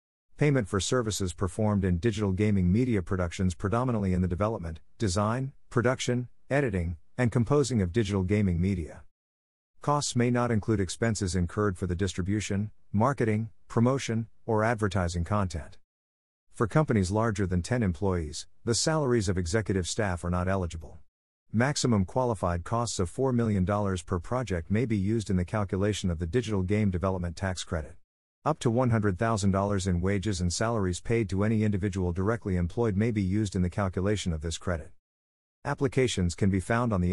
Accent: American